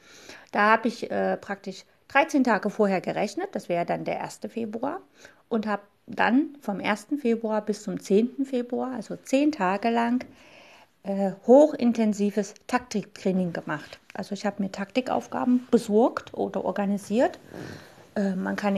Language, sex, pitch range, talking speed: German, female, 205-245 Hz, 140 wpm